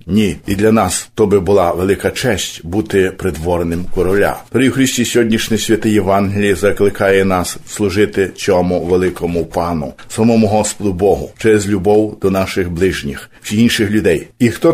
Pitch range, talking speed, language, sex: 95-110 Hz, 140 wpm, Ukrainian, male